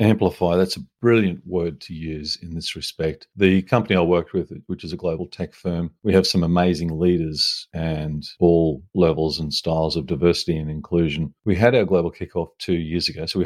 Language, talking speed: English, 200 wpm